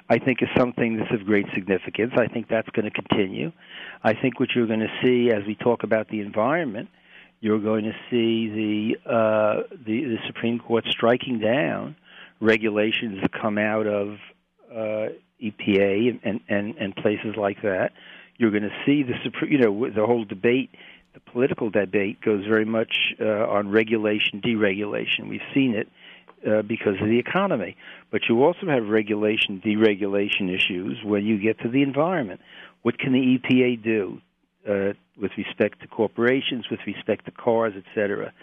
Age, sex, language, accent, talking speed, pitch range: 50-69, male, English, American, 170 wpm, 105-115 Hz